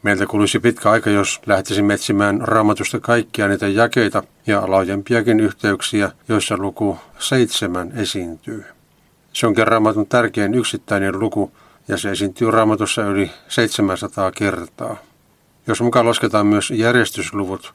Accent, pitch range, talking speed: native, 100-115 Hz, 120 wpm